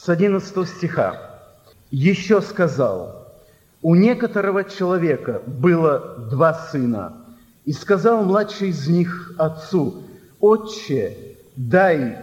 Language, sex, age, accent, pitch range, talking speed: Russian, male, 50-69, native, 155-205 Hz, 95 wpm